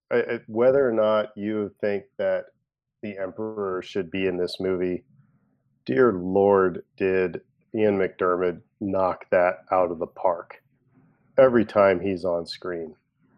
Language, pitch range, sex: English, 95-110 Hz, male